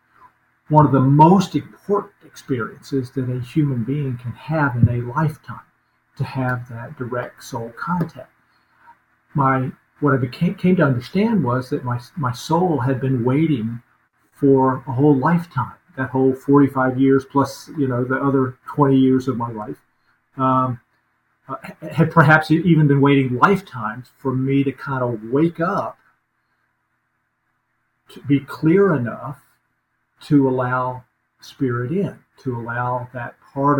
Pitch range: 125-150 Hz